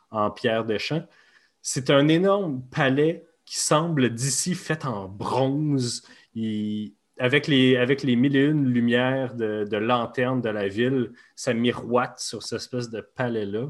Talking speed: 160 wpm